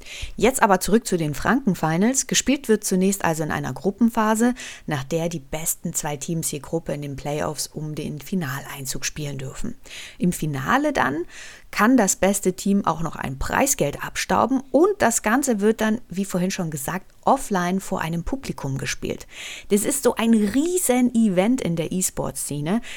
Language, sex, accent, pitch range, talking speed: German, female, German, 170-230 Hz, 170 wpm